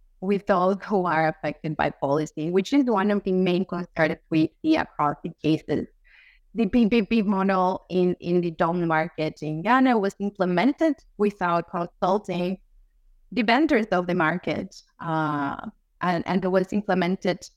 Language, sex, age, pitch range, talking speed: English, female, 30-49, 165-205 Hz, 150 wpm